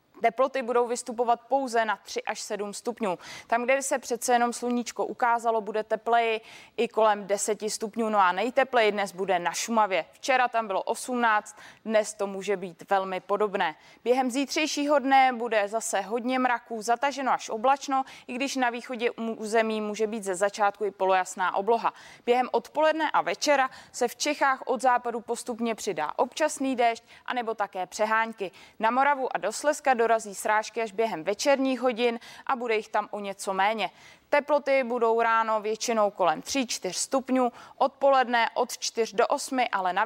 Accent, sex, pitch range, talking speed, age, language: native, female, 210-255 Hz, 165 wpm, 20-39, Czech